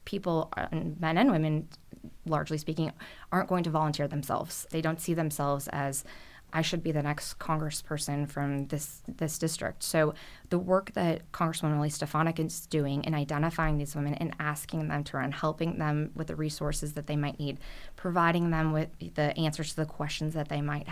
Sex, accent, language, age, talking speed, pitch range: female, American, English, 20-39, 185 wpm, 150-165 Hz